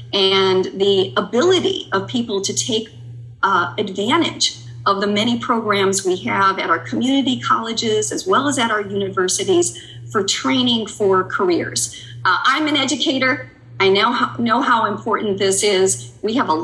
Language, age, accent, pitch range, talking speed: English, 40-59, American, 175-240 Hz, 155 wpm